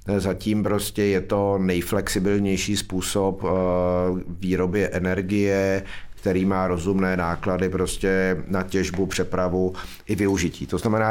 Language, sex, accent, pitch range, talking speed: Czech, male, native, 90-105 Hz, 110 wpm